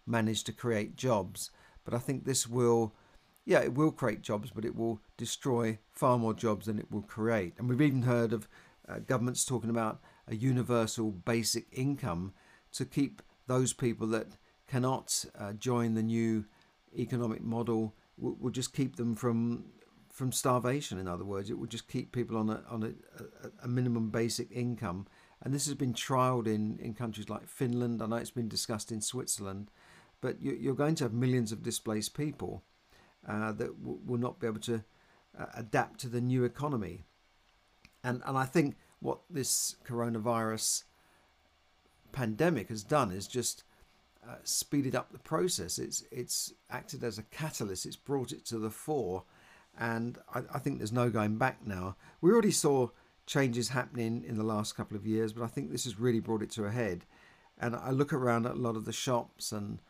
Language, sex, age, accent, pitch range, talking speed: English, male, 50-69, British, 110-125 Hz, 185 wpm